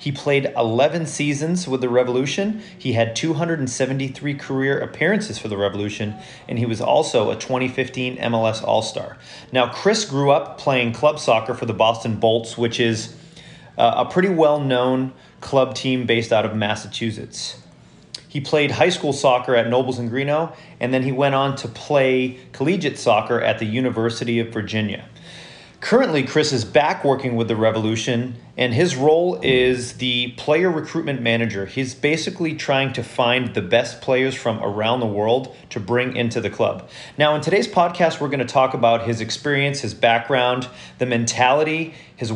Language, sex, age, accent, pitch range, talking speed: English, male, 30-49, American, 120-150 Hz, 165 wpm